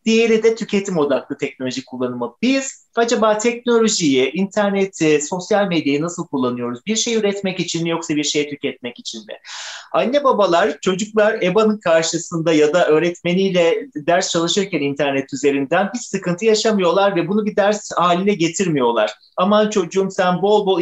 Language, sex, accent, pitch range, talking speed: Turkish, male, native, 155-200 Hz, 145 wpm